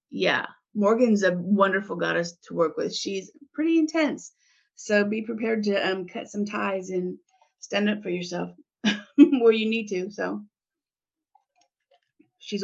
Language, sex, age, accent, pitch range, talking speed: English, female, 30-49, American, 200-270 Hz, 140 wpm